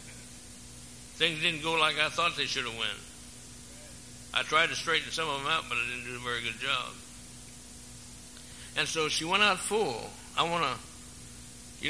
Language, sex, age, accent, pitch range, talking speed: English, male, 60-79, American, 100-155 Hz, 180 wpm